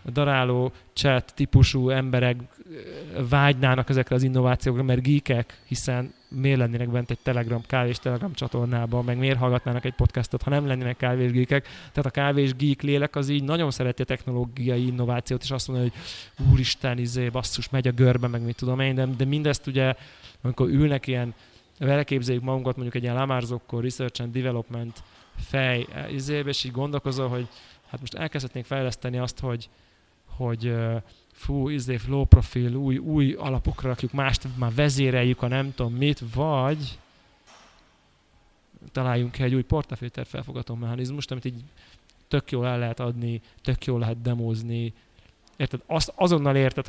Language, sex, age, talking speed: Hungarian, male, 20-39, 155 wpm